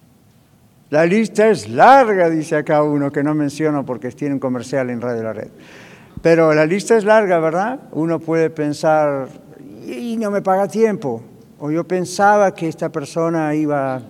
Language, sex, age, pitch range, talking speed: Spanish, male, 60-79, 135-180 Hz, 165 wpm